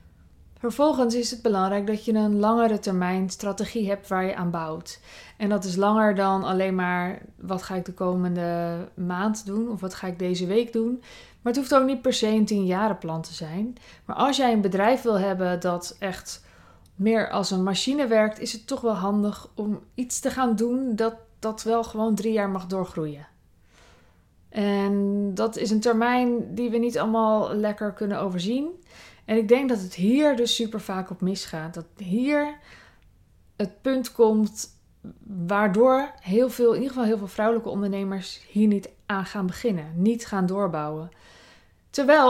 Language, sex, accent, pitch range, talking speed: Dutch, female, Dutch, 190-235 Hz, 180 wpm